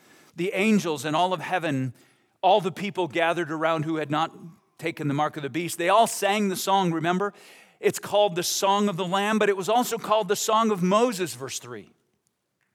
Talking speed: 205 wpm